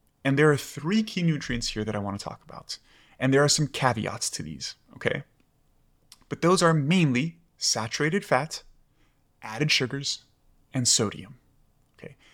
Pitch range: 110-150 Hz